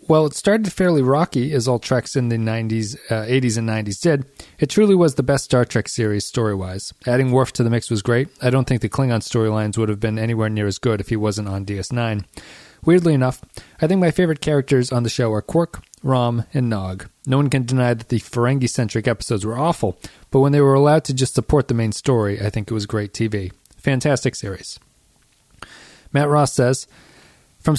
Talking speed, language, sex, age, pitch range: 215 wpm, English, male, 40-59, 110-135 Hz